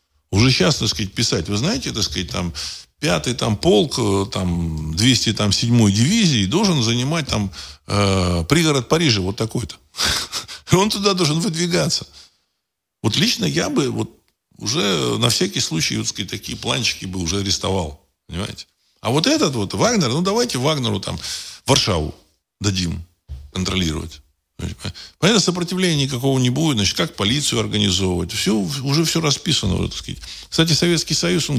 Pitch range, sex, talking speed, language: 85-140 Hz, male, 135 wpm, Russian